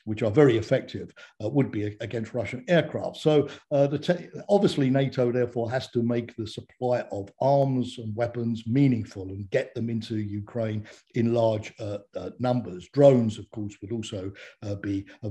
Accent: British